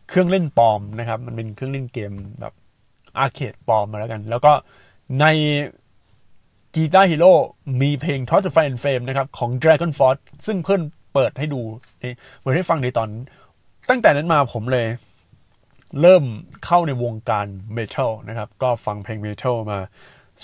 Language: Thai